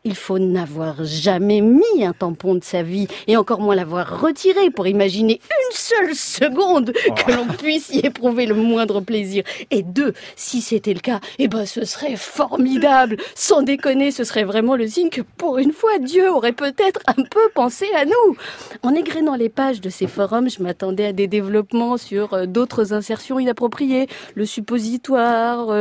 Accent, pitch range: French, 210-295 Hz